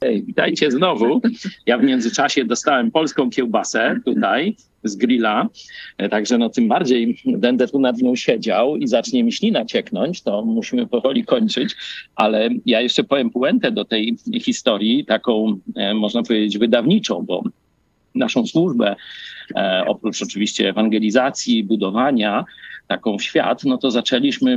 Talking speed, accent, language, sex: 130 wpm, native, Polish, male